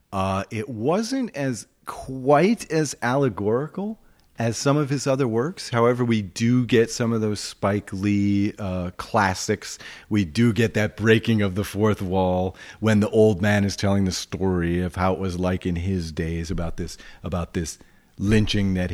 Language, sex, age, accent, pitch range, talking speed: English, male, 40-59, American, 90-115 Hz, 175 wpm